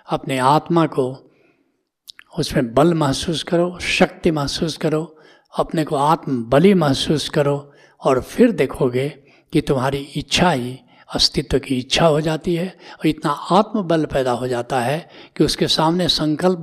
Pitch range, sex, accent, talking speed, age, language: 155-205 Hz, male, native, 150 wpm, 60-79, Hindi